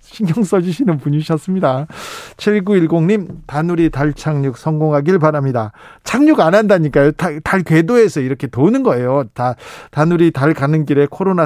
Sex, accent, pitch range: male, native, 145-195 Hz